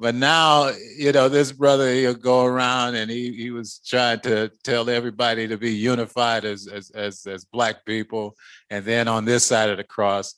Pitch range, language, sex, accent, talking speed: 100-120 Hz, English, male, American, 195 wpm